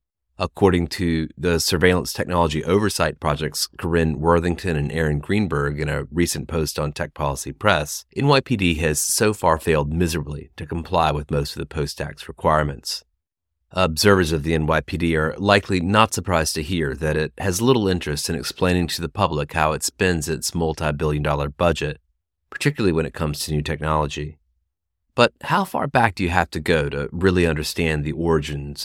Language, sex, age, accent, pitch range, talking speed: English, male, 30-49, American, 75-95 Hz, 170 wpm